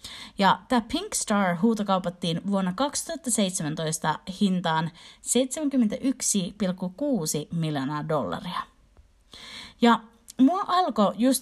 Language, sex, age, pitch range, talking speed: Finnish, female, 30-49, 180-245 Hz, 80 wpm